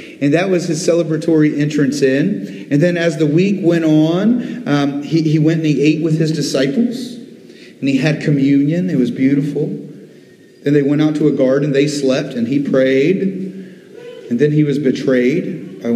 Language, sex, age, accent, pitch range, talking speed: English, male, 40-59, American, 145-205 Hz, 185 wpm